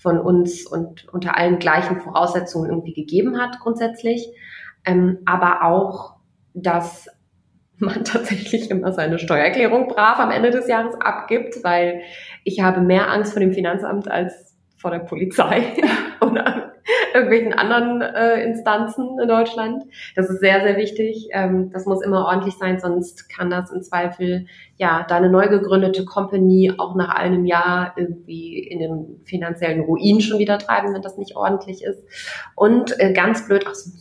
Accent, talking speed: German, 155 wpm